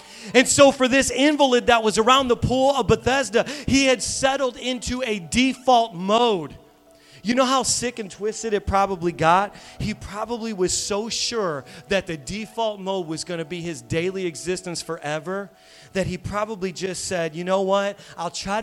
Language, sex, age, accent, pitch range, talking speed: English, male, 30-49, American, 135-180 Hz, 175 wpm